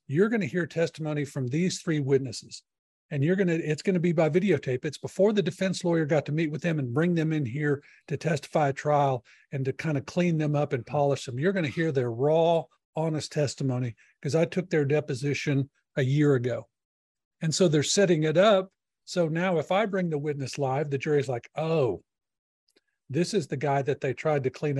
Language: English